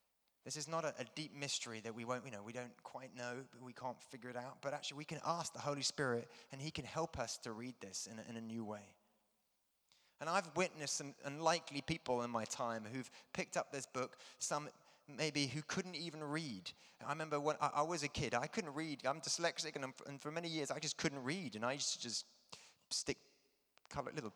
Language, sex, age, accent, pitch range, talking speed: English, male, 30-49, British, 120-155 Hz, 230 wpm